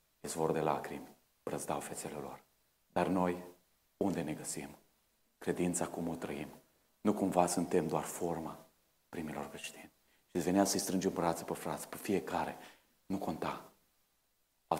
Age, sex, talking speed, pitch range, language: 40-59, male, 140 wpm, 85-105 Hz, Romanian